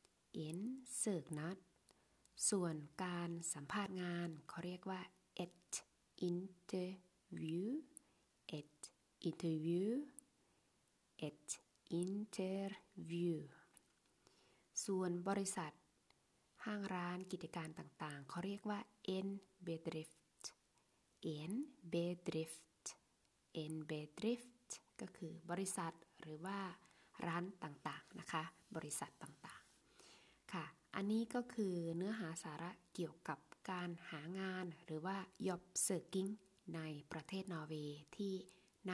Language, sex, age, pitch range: Thai, female, 20-39, 160-190 Hz